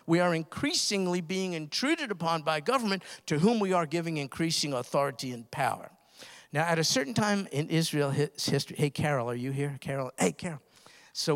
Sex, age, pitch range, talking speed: male, 50-69, 140-185 Hz, 180 wpm